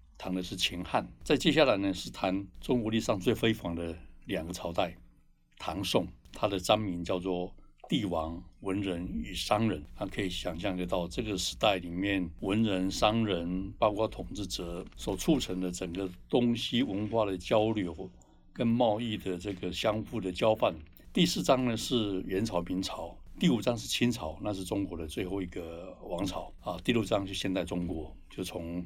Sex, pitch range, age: male, 90-110 Hz, 60-79